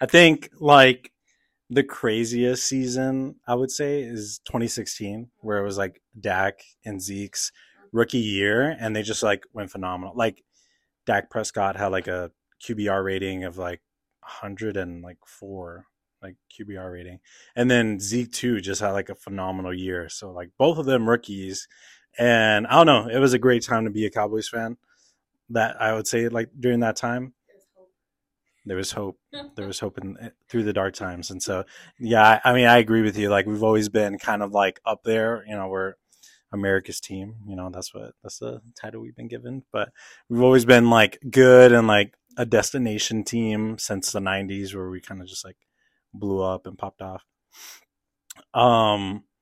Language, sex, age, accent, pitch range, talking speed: English, male, 20-39, American, 95-120 Hz, 180 wpm